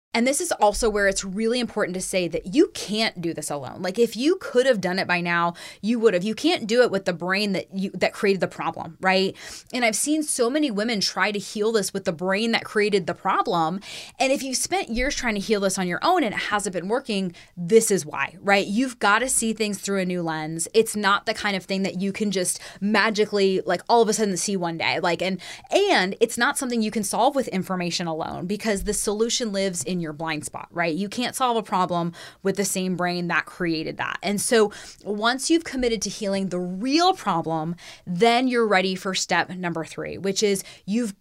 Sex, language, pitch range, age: female, English, 180-230 Hz, 20-39